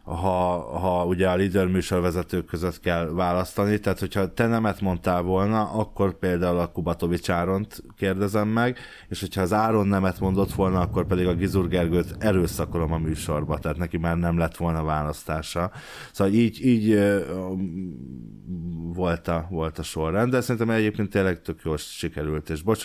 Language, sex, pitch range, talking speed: Hungarian, male, 85-105 Hz, 155 wpm